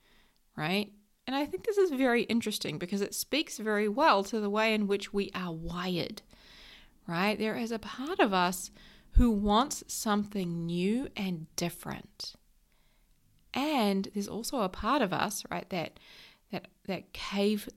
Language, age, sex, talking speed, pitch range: English, 30-49, female, 155 wpm, 190-255 Hz